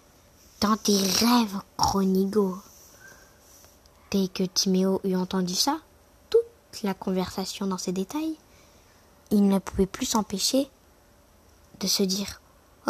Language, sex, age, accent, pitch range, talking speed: French, female, 20-39, French, 210-290 Hz, 125 wpm